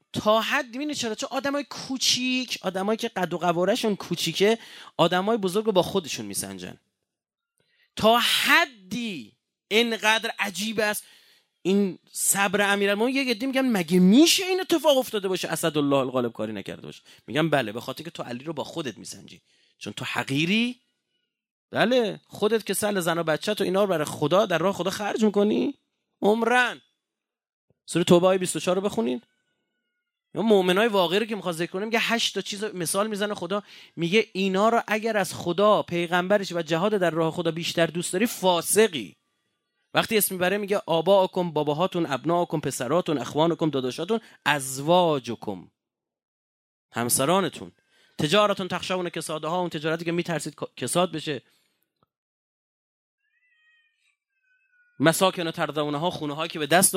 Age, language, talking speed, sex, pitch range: 30-49, Persian, 140 wpm, male, 165-225 Hz